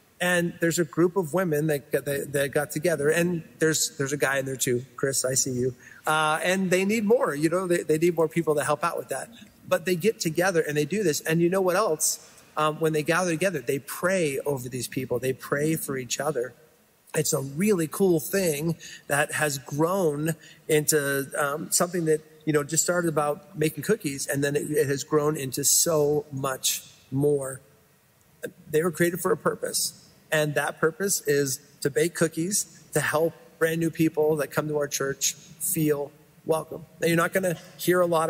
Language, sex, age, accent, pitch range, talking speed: English, male, 40-59, American, 145-170 Hz, 200 wpm